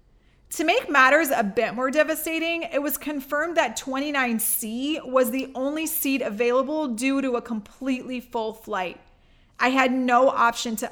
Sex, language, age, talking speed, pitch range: female, English, 30-49, 155 wpm, 225-275 Hz